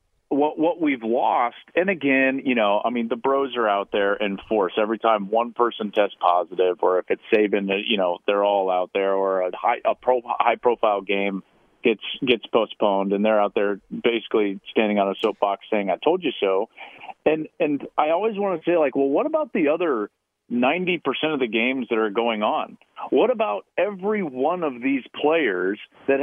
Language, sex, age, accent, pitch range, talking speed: English, male, 40-59, American, 110-180 Hz, 200 wpm